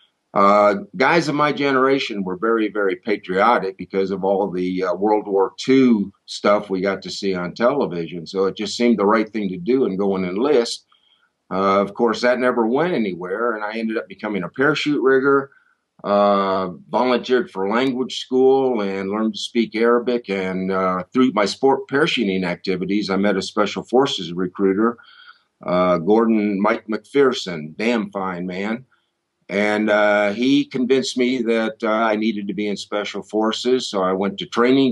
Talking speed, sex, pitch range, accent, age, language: 175 wpm, male, 95-120 Hz, American, 50-69, English